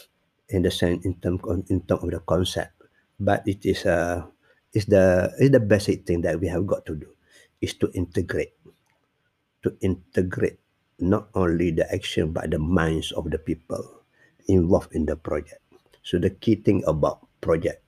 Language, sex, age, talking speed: English, male, 50-69, 180 wpm